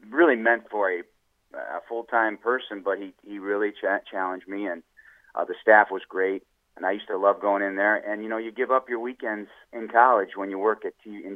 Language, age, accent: English, 40-59, American